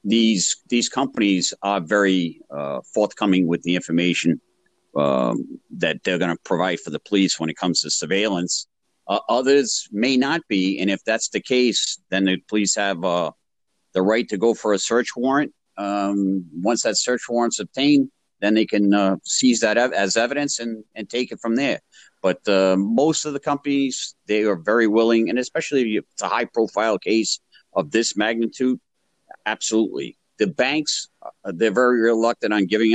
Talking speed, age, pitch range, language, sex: 175 wpm, 50-69, 95-120 Hz, English, male